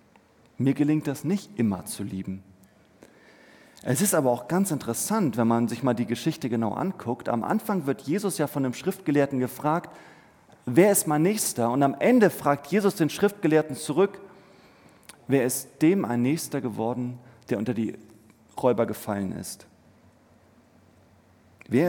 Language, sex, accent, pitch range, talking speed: German, male, German, 115-165 Hz, 150 wpm